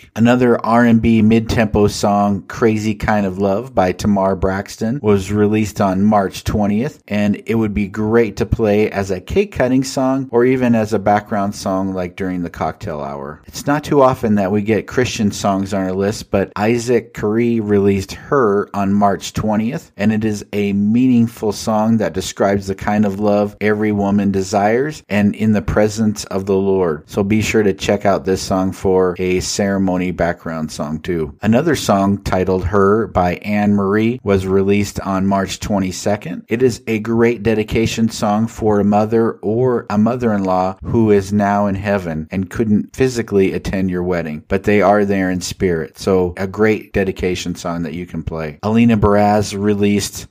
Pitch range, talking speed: 95-110 Hz, 175 wpm